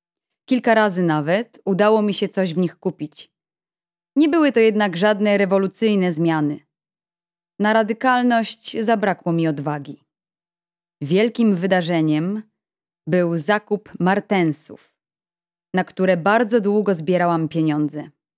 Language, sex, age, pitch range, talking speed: Polish, female, 20-39, 175-215 Hz, 110 wpm